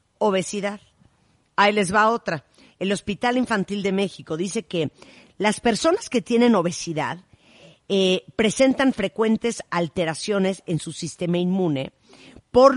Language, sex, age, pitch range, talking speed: Spanish, female, 50-69, 160-220 Hz, 120 wpm